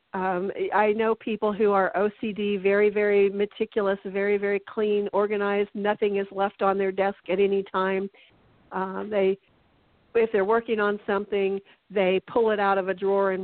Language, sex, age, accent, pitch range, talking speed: English, female, 50-69, American, 190-215 Hz, 170 wpm